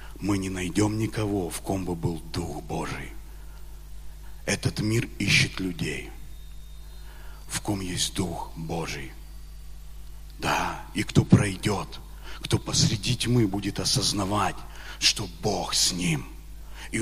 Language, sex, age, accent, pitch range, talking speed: Russian, male, 40-59, native, 95-120 Hz, 115 wpm